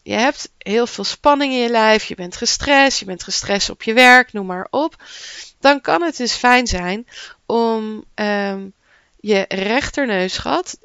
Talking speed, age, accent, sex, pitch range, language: 160 wpm, 20-39, Dutch, female, 190-250 Hz, Dutch